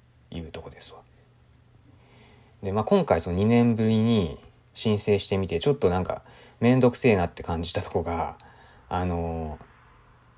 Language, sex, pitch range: Japanese, male, 90-140 Hz